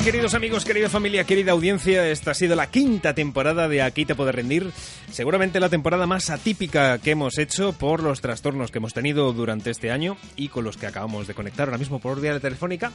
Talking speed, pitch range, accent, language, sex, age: 220 wpm, 115-155 Hz, Spanish, Spanish, male, 30-49